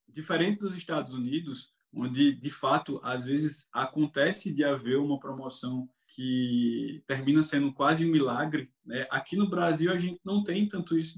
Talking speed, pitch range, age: 160 wpm, 140-175 Hz, 20-39